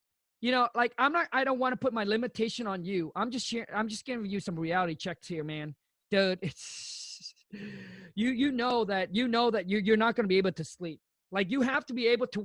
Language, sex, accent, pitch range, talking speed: English, male, American, 210-255 Hz, 245 wpm